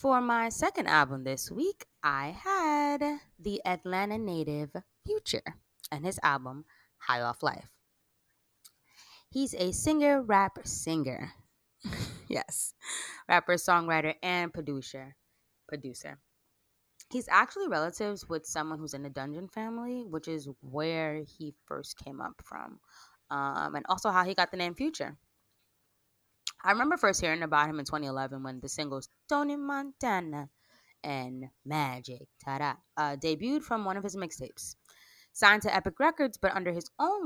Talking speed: 140 wpm